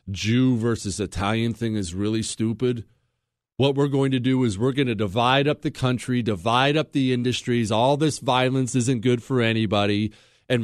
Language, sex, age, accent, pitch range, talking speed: English, male, 40-59, American, 115-155 Hz, 180 wpm